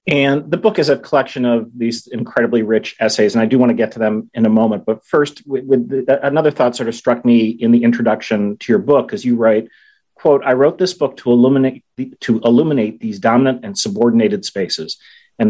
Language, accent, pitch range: English, American, 115-145 Hz